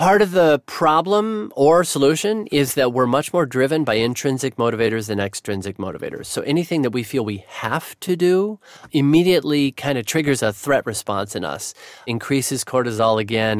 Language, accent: English, American